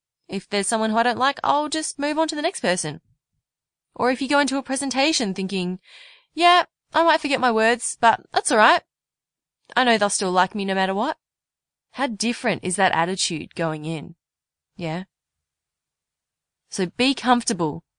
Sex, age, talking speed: female, 20-39, 175 wpm